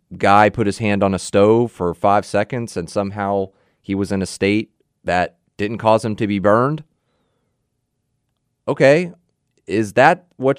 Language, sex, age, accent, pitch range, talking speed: English, male, 30-49, American, 90-125 Hz, 160 wpm